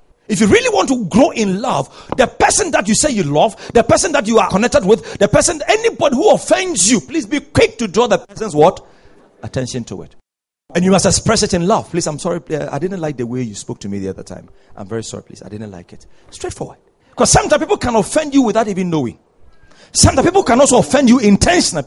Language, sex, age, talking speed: English, male, 40-59, 235 wpm